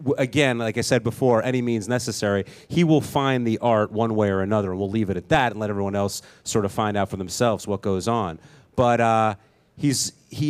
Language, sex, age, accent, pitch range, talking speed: English, male, 30-49, American, 110-140 Hz, 230 wpm